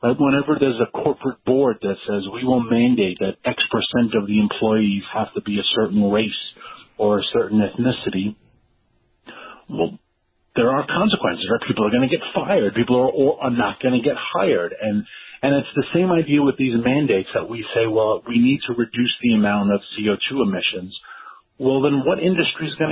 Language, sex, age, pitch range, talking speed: English, male, 40-59, 100-125 Hz, 195 wpm